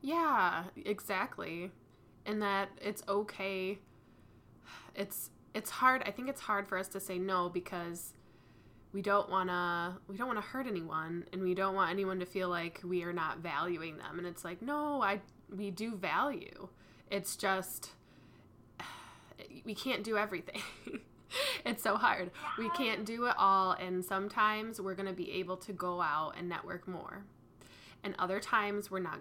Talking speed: 170 wpm